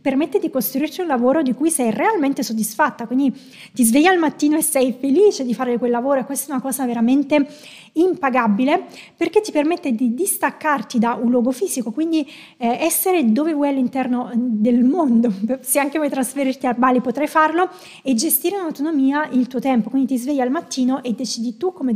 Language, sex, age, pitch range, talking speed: Italian, female, 20-39, 245-300 Hz, 190 wpm